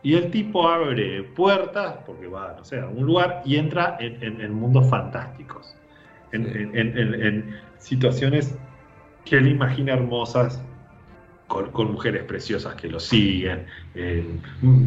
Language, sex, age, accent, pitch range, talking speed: Spanish, male, 40-59, Argentinian, 100-140 Hz, 135 wpm